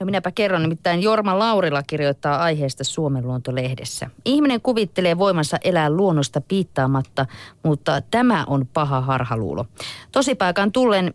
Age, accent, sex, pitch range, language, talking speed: 30-49, native, female, 140-190 Hz, Finnish, 125 wpm